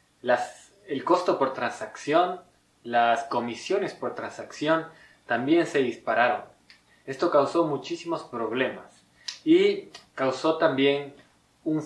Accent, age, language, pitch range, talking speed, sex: Mexican, 20-39, Spanish, 130-180 Hz, 100 wpm, male